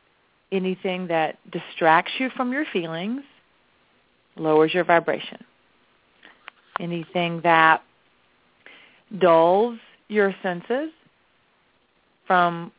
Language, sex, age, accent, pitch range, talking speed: English, female, 40-59, American, 165-210 Hz, 75 wpm